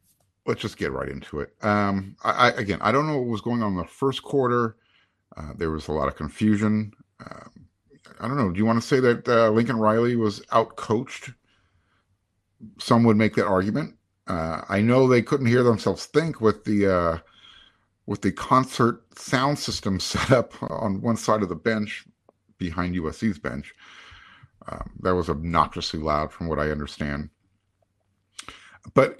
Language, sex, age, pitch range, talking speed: English, male, 50-69, 90-125 Hz, 175 wpm